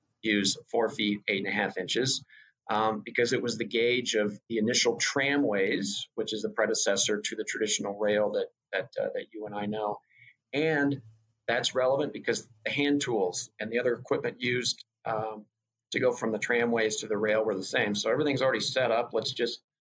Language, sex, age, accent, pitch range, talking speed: English, male, 40-59, American, 110-135 Hz, 195 wpm